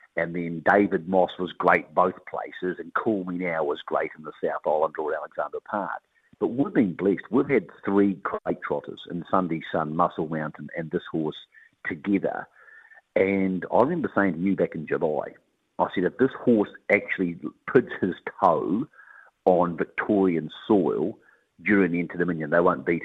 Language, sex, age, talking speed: English, male, 50-69, 170 wpm